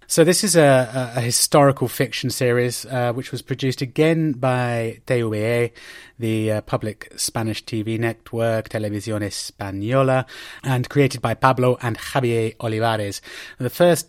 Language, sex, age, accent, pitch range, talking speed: English, male, 30-49, British, 110-135 Hz, 140 wpm